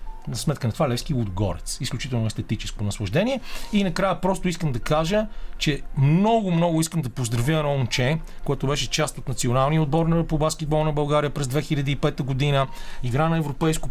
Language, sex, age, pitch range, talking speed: Bulgarian, male, 40-59, 125-160 Hz, 175 wpm